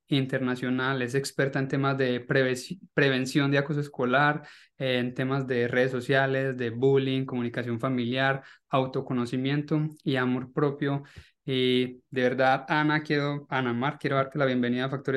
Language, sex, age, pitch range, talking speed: Spanish, male, 20-39, 125-145 Hz, 150 wpm